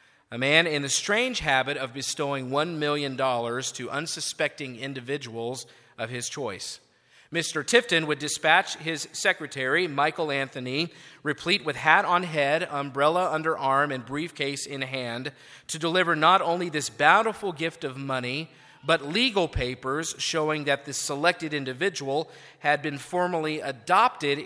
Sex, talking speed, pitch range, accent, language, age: male, 140 wpm, 140-170 Hz, American, English, 40-59